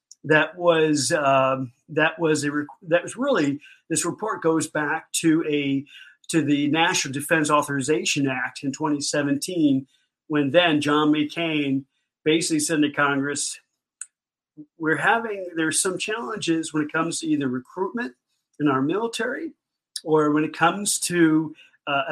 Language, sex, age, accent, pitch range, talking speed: English, male, 50-69, American, 145-170 Hz, 140 wpm